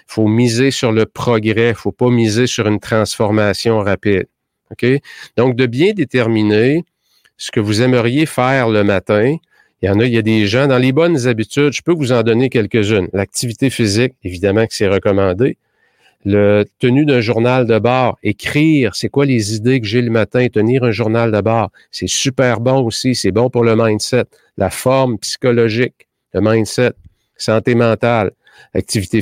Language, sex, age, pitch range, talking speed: French, male, 50-69, 110-130 Hz, 185 wpm